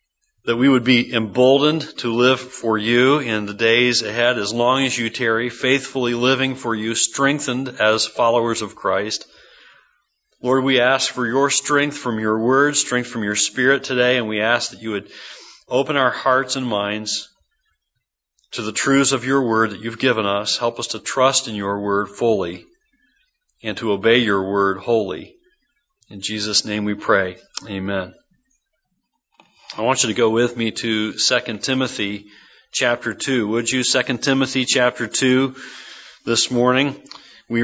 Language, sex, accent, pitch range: English, male, American, 115-140 Hz